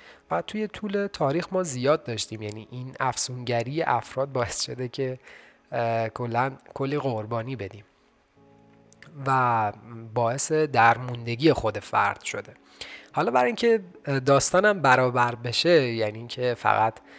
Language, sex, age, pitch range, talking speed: Persian, male, 30-49, 115-145 Hz, 115 wpm